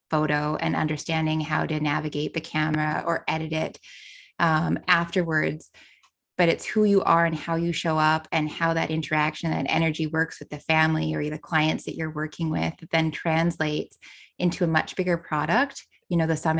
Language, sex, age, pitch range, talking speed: English, female, 20-39, 155-180 Hz, 190 wpm